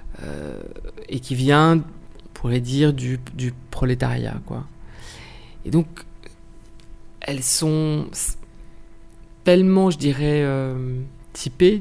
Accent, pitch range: French, 130-160 Hz